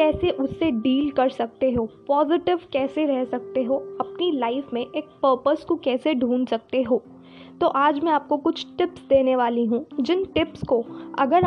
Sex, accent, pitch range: female, native, 245-300 Hz